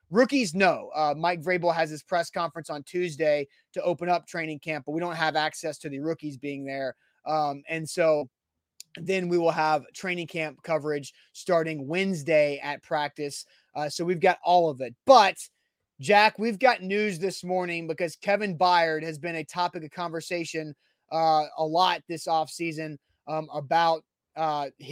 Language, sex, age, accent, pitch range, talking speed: English, male, 20-39, American, 155-180 Hz, 170 wpm